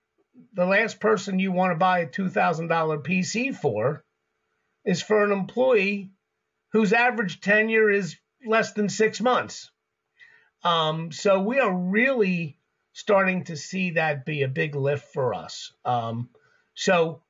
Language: English